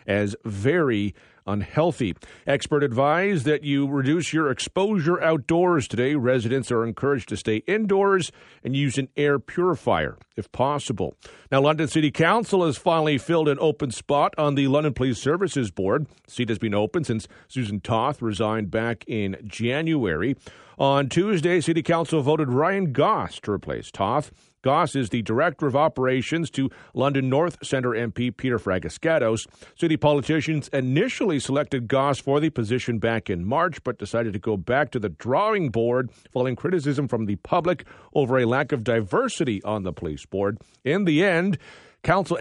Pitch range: 115-155 Hz